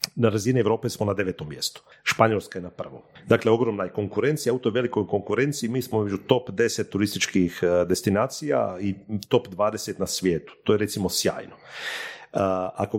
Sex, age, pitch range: male, 40-59, 100-135 Hz